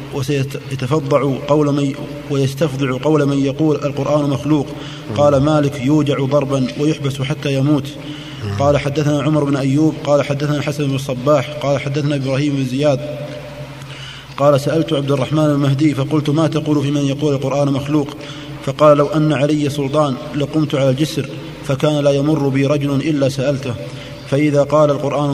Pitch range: 140-150 Hz